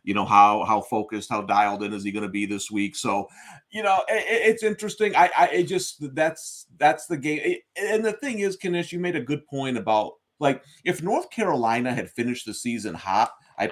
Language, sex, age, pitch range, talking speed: English, male, 40-59, 120-175 Hz, 225 wpm